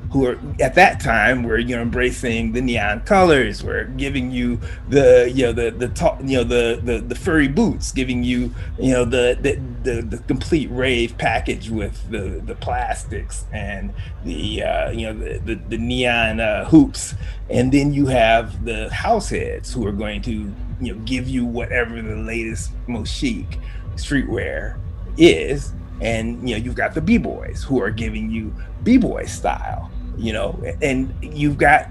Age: 30-49